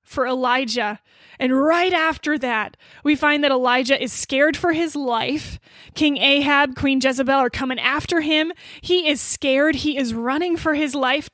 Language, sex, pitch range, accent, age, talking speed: English, female, 255-310 Hz, American, 20-39, 170 wpm